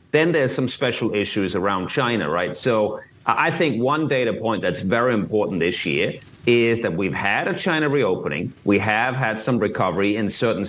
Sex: male